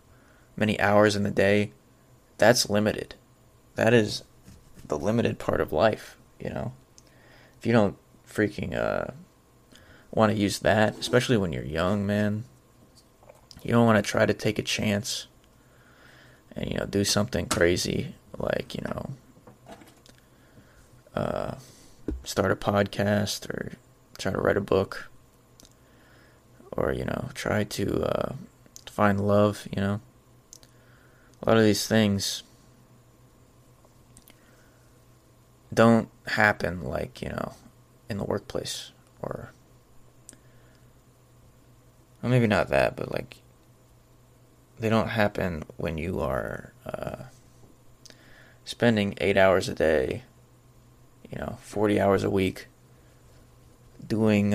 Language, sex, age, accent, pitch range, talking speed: English, male, 20-39, American, 105-125 Hz, 115 wpm